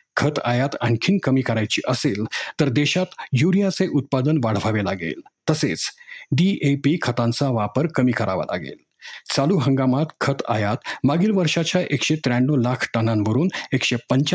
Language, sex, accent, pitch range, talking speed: Marathi, male, native, 120-150 Hz, 130 wpm